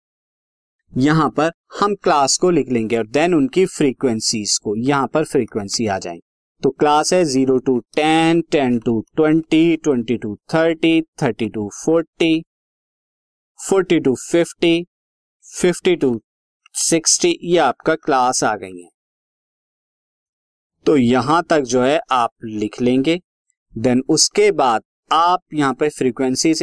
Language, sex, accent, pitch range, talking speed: Hindi, male, native, 135-170 Hz, 130 wpm